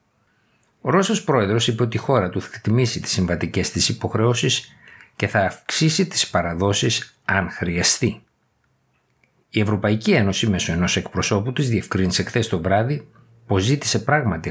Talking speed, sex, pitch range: 145 wpm, male, 90-120 Hz